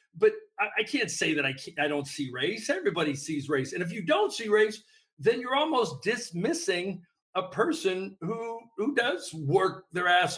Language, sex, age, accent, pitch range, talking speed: English, male, 50-69, American, 145-195 Hz, 185 wpm